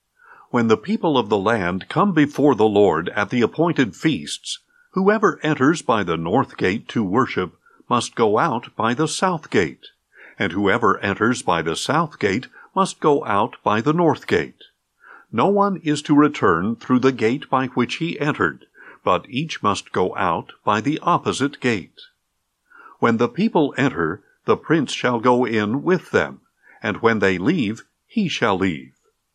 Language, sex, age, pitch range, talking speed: English, male, 50-69, 120-195 Hz, 170 wpm